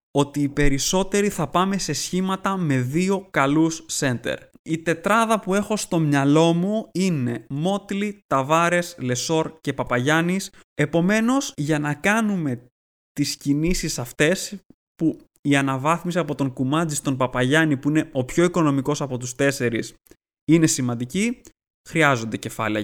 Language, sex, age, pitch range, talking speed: Greek, male, 20-39, 140-185 Hz, 135 wpm